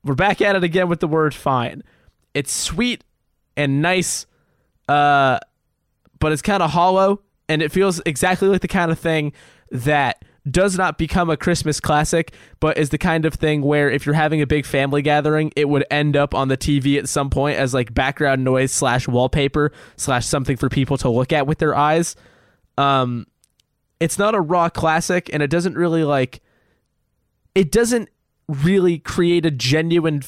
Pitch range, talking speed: 135-170 Hz, 180 wpm